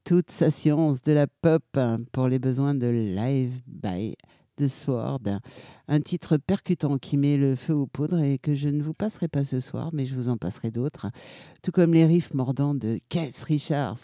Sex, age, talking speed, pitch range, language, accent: male, 60-79, 195 wpm, 125-160 Hz, French, French